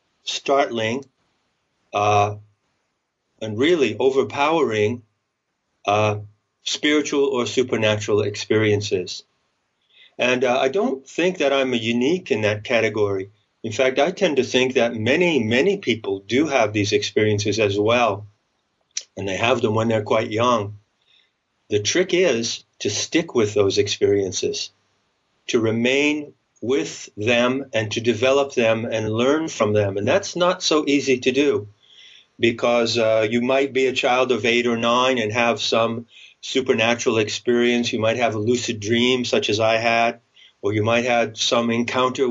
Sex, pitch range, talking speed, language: male, 110-130 Hz, 150 wpm, English